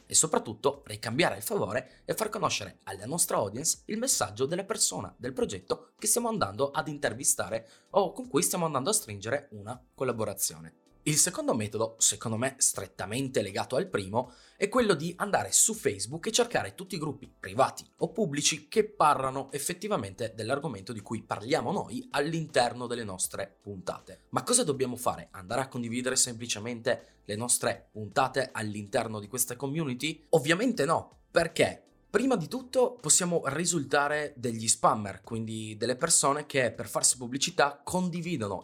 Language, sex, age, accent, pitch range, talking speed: Italian, male, 20-39, native, 115-160 Hz, 155 wpm